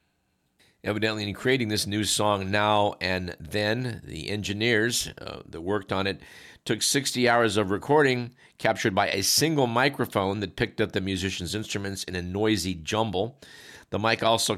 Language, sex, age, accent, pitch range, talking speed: English, male, 50-69, American, 95-120 Hz, 160 wpm